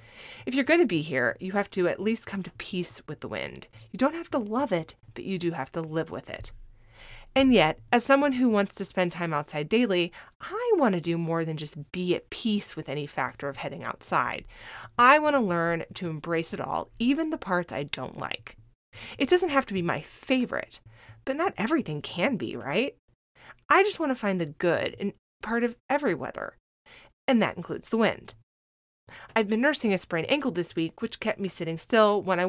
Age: 30-49